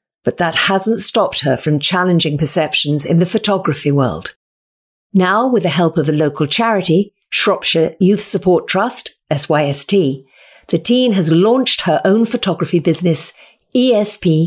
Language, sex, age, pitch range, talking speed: English, female, 50-69, 155-215 Hz, 140 wpm